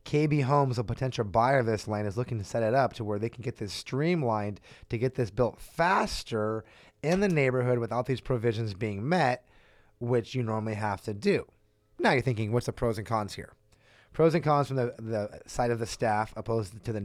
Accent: American